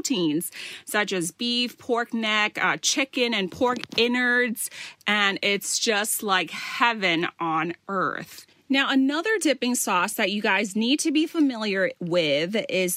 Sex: female